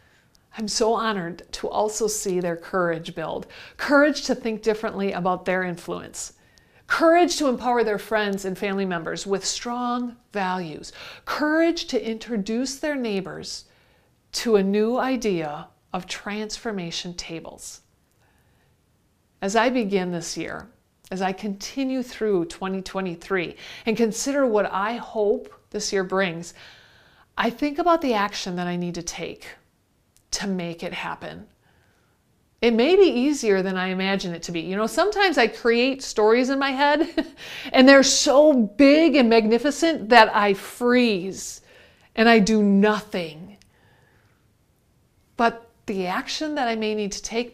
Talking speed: 140 wpm